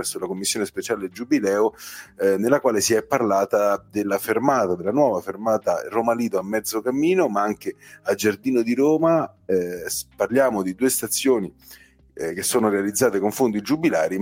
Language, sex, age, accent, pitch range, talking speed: Italian, male, 40-59, native, 100-155 Hz, 160 wpm